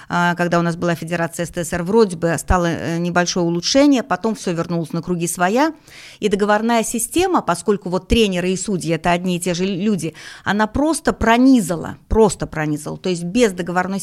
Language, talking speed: Russian, 170 wpm